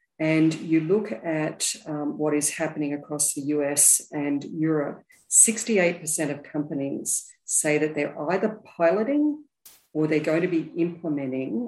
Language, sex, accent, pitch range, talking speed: English, female, Australian, 150-185 Hz, 140 wpm